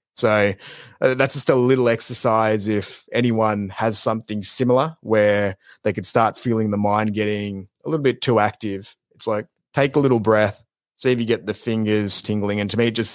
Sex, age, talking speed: male, 20-39, 195 wpm